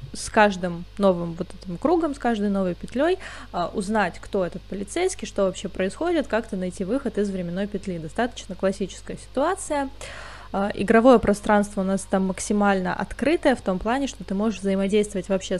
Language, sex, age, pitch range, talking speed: Russian, female, 20-39, 190-225 Hz, 160 wpm